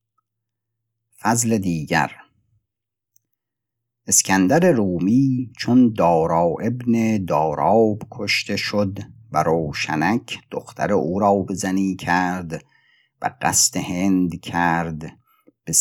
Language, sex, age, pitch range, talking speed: Persian, male, 50-69, 85-115 Hz, 85 wpm